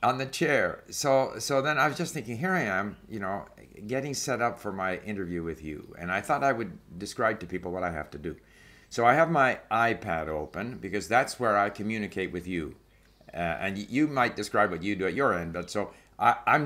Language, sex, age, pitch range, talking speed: English, male, 50-69, 90-120 Hz, 225 wpm